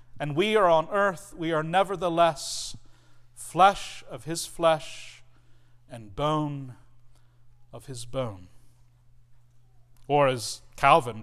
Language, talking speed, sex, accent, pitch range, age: English, 105 wpm, male, American, 120-185 Hz, 40-59